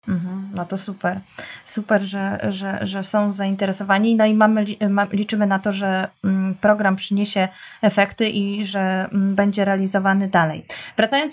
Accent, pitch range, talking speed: native, 200-225 Hz, 130 wpm